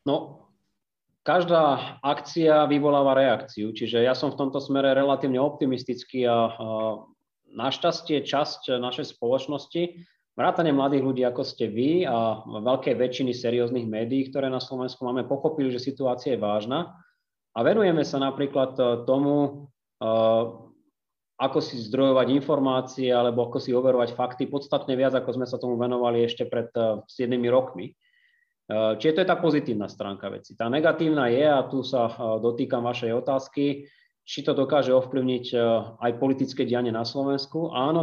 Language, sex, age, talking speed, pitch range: Slovak, male, 30-49, 140 wpm, 120-140 Hz